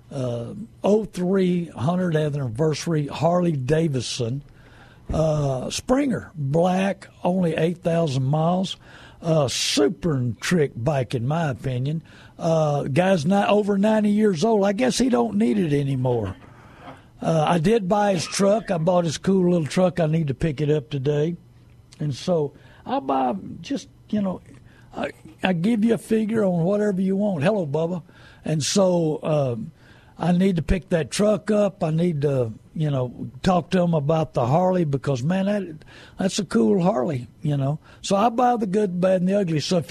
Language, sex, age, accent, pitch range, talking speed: English, male, 60-79, American, 140-195 Hz, 170 wpm